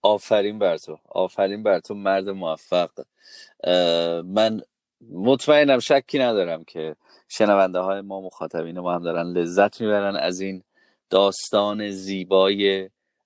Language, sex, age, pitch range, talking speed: Persian, male, 30-49, 95-115 Hz, 120 wpm